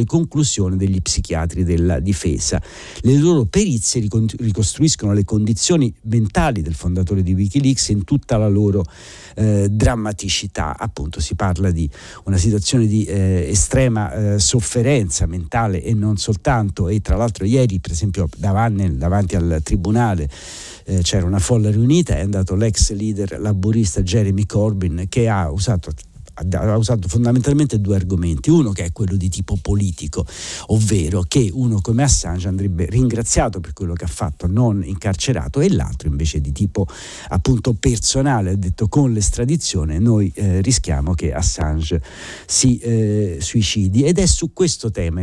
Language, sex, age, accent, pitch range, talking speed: Italian, male, 50-69, native, 90-115 Hz, 150 wpm